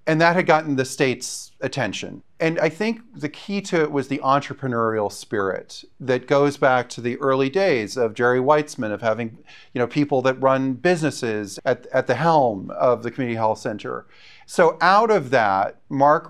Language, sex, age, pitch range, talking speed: English, male, 40-59, 115-145 Hz, 185 wpm